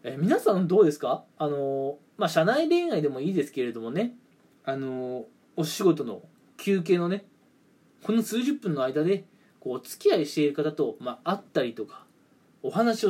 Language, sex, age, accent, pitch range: Japanese, male, 20-39, native, 150-205 Hz